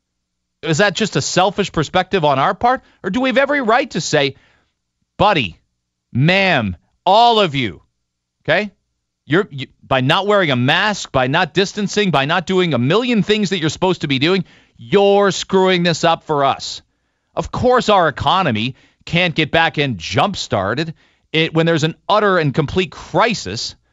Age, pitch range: 40-59, 125-195 Hz